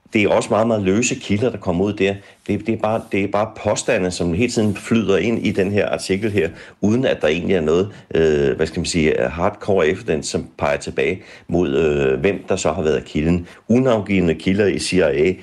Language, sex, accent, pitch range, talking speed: Danish, male, native, 80-100 Hz, 195 wpm